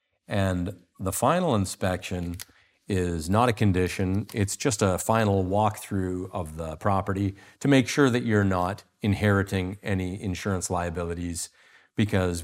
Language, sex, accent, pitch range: English, male, American, 90-105 Hz